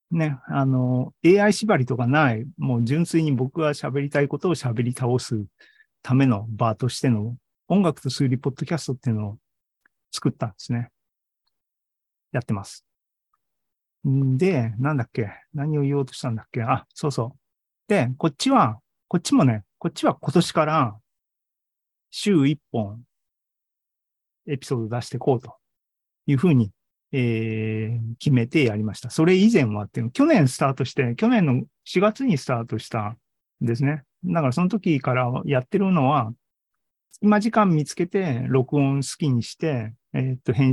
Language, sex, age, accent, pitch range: Japanese, male, 40-59, native, 115-150 Hz